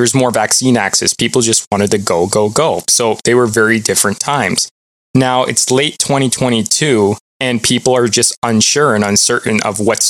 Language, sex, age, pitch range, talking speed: English, male, 20-39, 105-125 Hz, 180 wpm